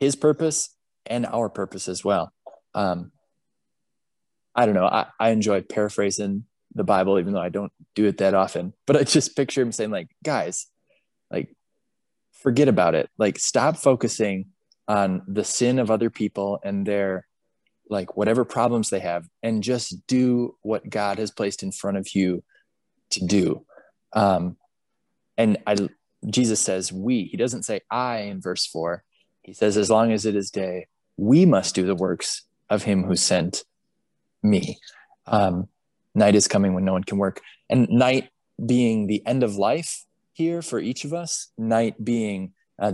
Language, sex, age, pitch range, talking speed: English, male, 20-39, 95-115 Hz, 170 wpm